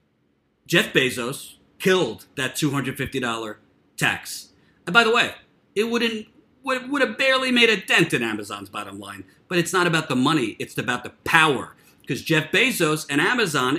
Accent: American